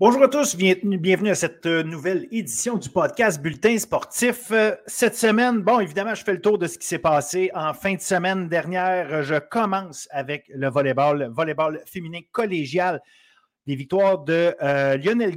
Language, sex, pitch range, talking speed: French, male, 140-195 Hz, 170 wpm